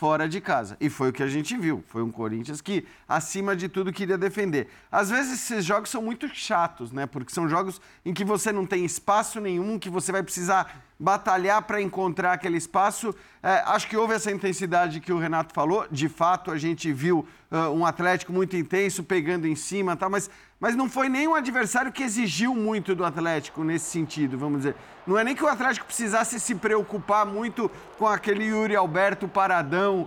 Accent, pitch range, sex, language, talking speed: Brazilian, 170-220 Hz, male, Portuguese, 200 wpm